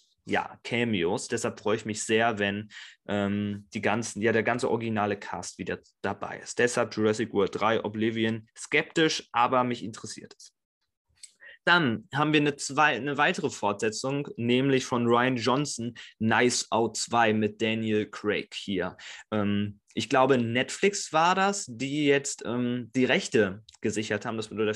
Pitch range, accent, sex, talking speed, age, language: 115-145 Hz, German, male, 155 wpm, 20-39, German